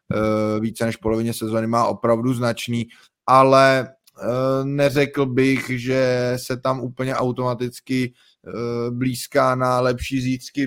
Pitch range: 110-125 Hz